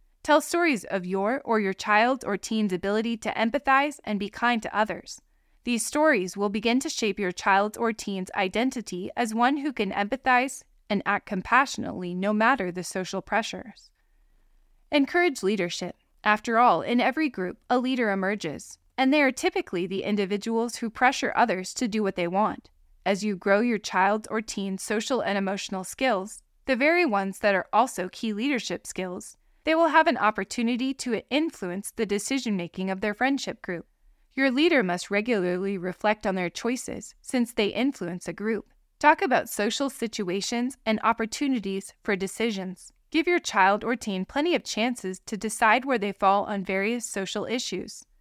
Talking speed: 170 wpm